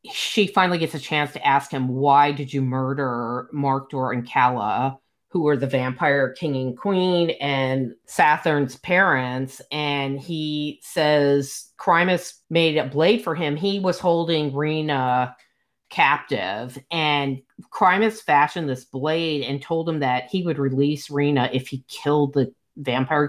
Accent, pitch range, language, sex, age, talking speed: American, 135-165 Hz, English, female, 40-59, 145 wpm